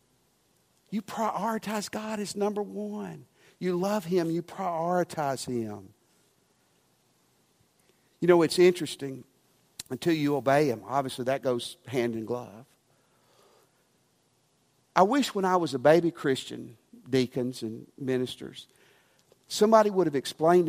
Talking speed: 120 wpm